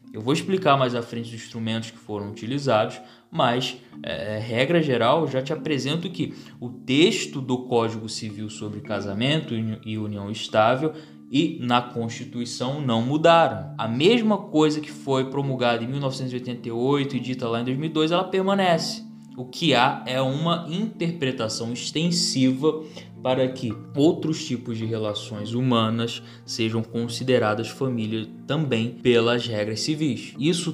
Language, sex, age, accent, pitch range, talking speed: Portuguese, male, 20-39, Brazilian, 110-135 Hz, 135 wpm